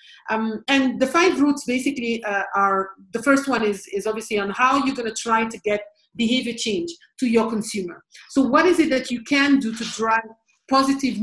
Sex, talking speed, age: female, 205 wpm, 50-69